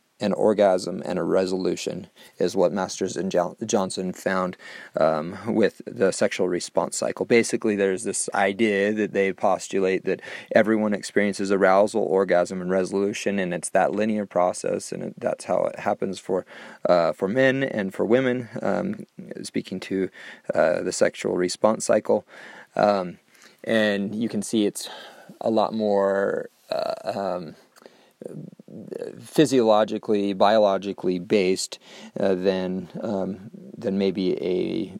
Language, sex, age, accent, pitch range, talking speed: English, male, 30-49, American, 95-110 Hz, 135 wpm